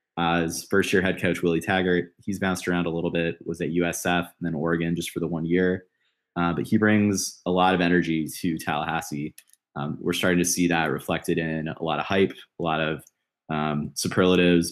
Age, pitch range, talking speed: 20-39, 80-90 Hz, 210 wpm